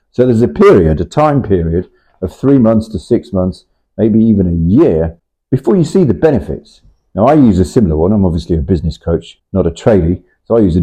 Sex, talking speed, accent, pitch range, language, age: male, 220 wpm, British, 85-110 Hz, English, 40-59